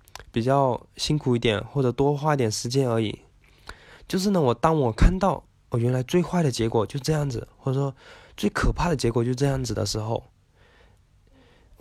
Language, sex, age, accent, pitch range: Chinese, male, 20-39, native, 110-140 Hz